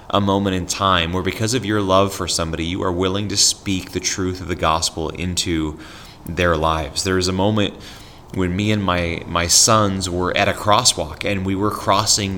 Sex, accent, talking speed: male, American, 205 wpm